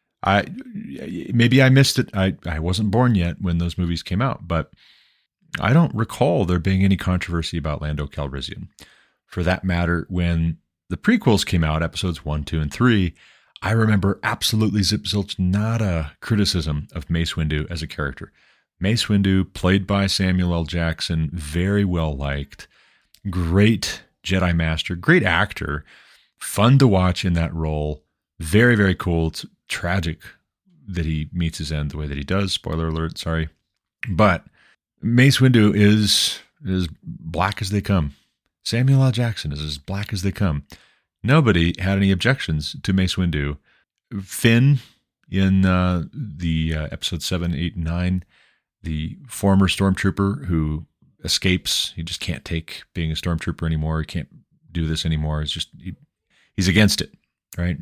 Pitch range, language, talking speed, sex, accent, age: 80-100 Hz, English, 150 wpm, male, American, 30-49